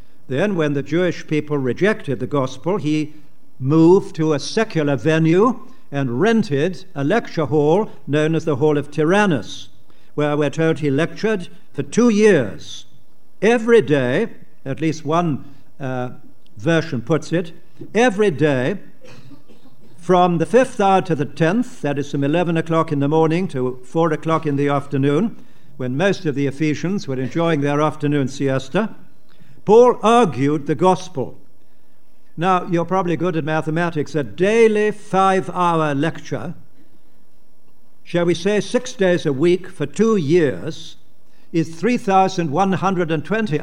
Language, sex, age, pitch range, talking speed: English, male, 60-79, 145-190 Hz, 140 wpm